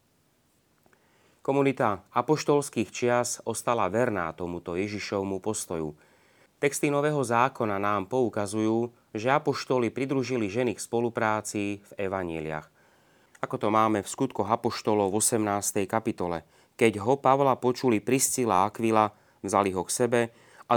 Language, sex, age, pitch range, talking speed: Slovak, male, 30-49, 100-125 Hz, 115 wpm